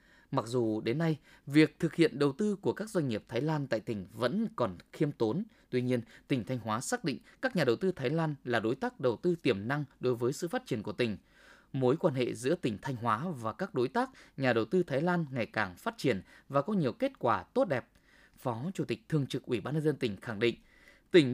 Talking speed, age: 245 wpm, 20-39